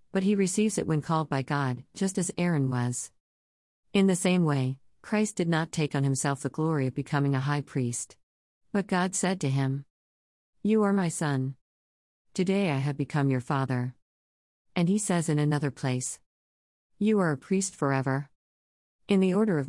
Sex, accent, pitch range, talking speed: female, American, 125-170 Hz, 180 wpm